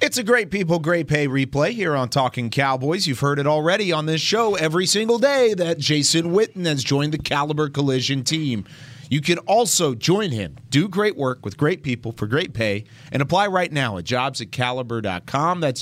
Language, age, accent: English, 30-49, American